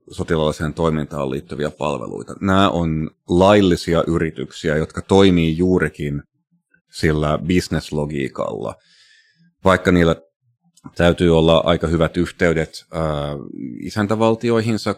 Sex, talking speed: male, 85 wpm